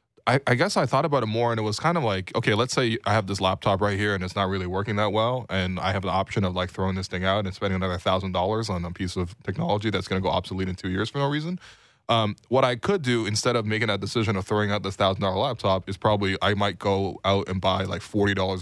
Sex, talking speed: male, 285 wpm